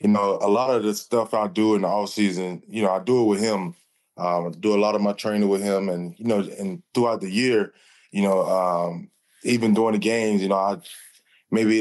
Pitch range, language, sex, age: 100-115 Hz, English, male, 20-39